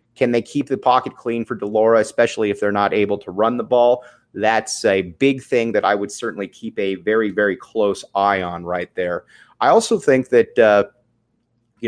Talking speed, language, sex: 200 wpm, English, male